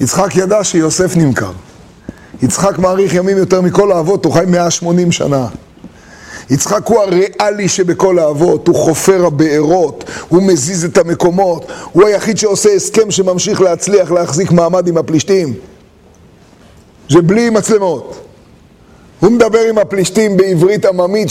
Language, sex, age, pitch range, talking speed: Hebrew, male, 30-49, 170-215 Hz, 125 wpm